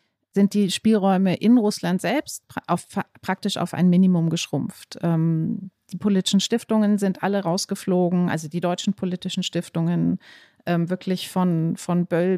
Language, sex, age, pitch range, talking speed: German, female, 30-49, 180-210 Hz, 135 wpm